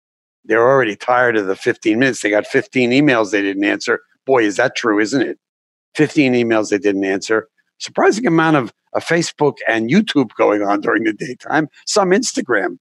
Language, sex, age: English, male, 60-79